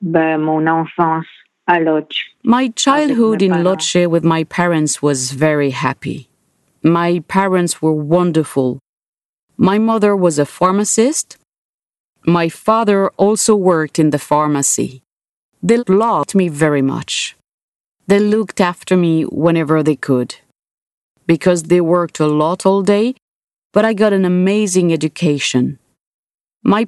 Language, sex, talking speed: English, female, 115 wpm